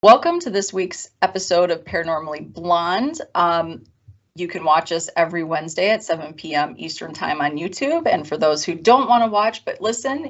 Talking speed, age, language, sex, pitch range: 185 wpm, 30-49, English, female, 160-205 Hz